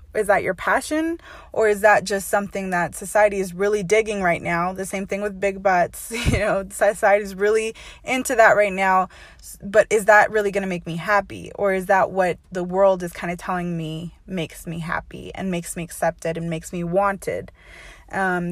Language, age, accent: English, 20-39, American